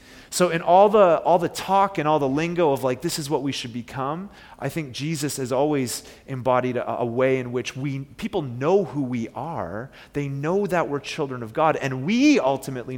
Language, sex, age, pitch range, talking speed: English, male, 30-49, 120-150 Hz, 215 wpm